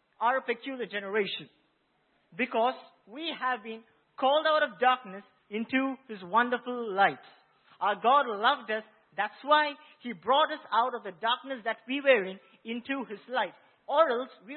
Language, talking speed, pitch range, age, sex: English, 160 wpm, 210-265 Hz, 50-69, male